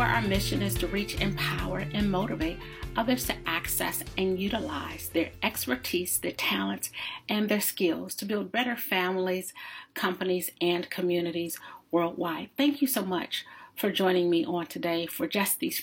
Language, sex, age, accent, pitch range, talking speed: English, female, 40-59, American, 180-225 Hz, 150 wpm